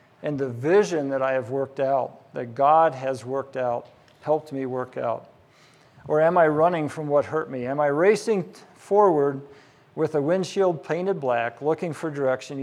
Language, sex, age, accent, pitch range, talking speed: English, male, 50-69, American, 135-180 Hz, 175 wpm